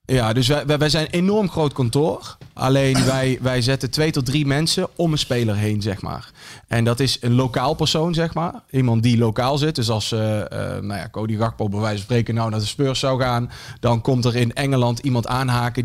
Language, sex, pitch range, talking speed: Dutch, male, 115-140 Hz, 225 wpm